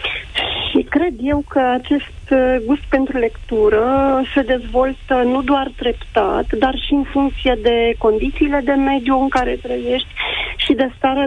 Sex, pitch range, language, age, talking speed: female, 240-285 Hz, Romanian, 40-59, 145 wpm